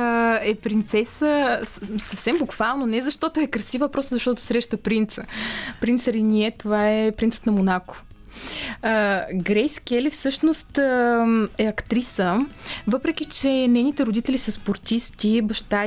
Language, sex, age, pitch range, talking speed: Bulgarian, female, 20-39, 210-245 Hz, 125 wpm